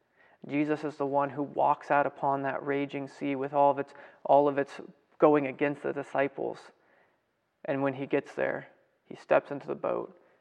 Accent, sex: American, male